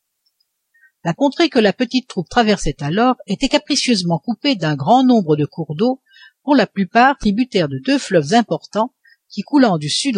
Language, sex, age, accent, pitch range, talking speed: French, female, 60-79, French, 165-250 Hz, 170 wpm